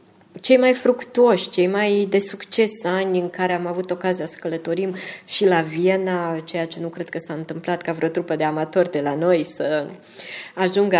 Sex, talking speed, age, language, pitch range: female, 190 wpm, 20-39, Romanian, 165-200 Hz